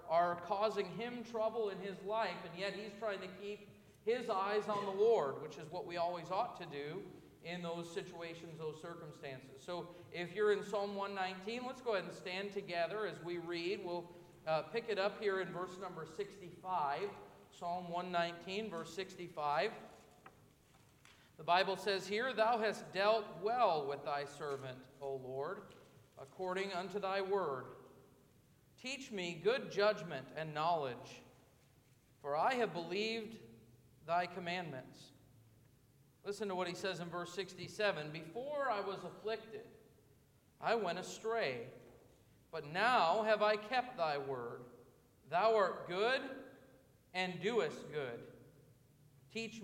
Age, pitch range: 50-69, 150-210 Hz